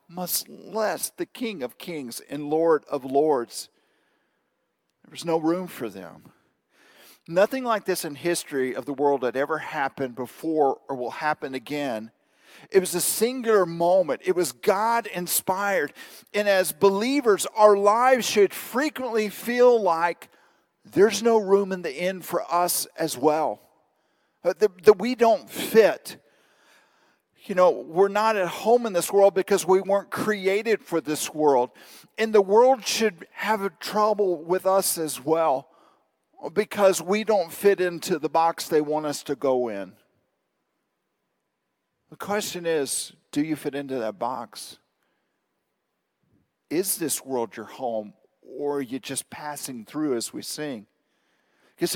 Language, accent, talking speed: English, American, 145 wpm